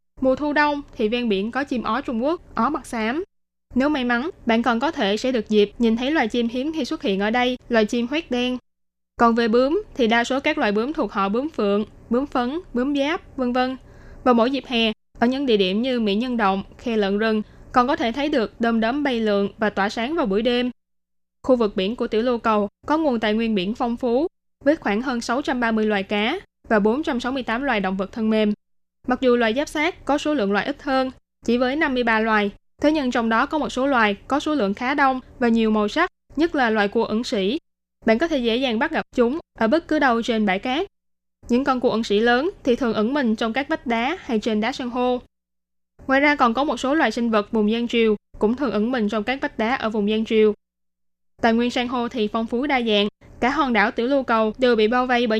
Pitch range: 215-265 Hz